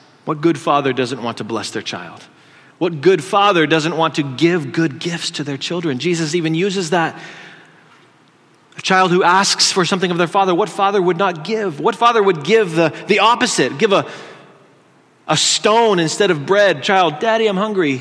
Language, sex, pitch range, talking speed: English, male, 155-200 Hz, 190 wpm